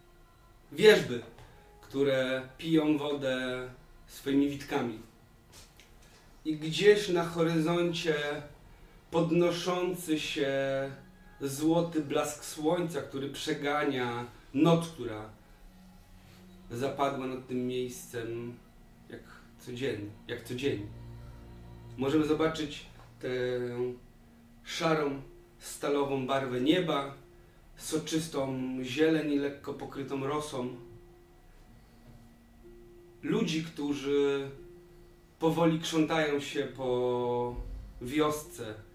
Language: Polish